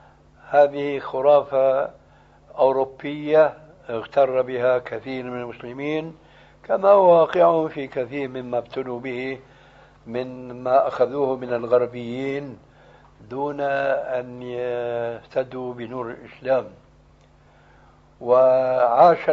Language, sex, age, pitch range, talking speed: Arabic, male, 60-79, 120-145 Hz, 80 wpm